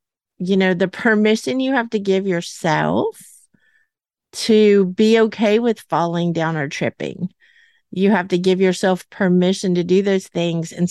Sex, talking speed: female, 155 wpm